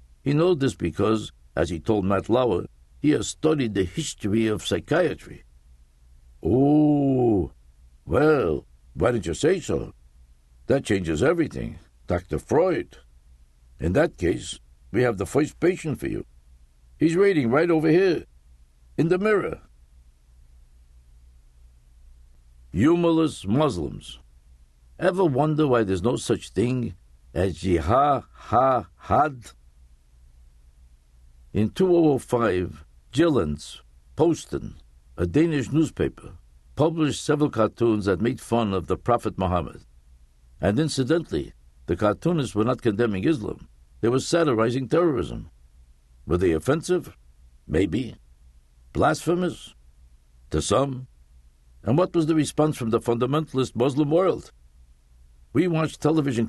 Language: English